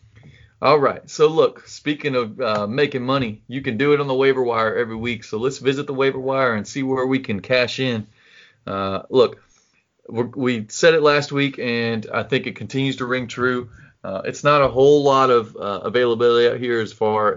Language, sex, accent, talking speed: English, male, American, 210 wpm